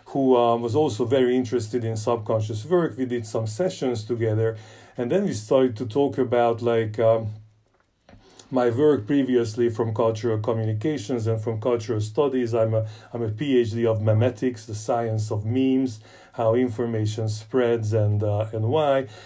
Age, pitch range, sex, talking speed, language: 40-59, 110-130 Hz, male, 160 wpm, Hungarian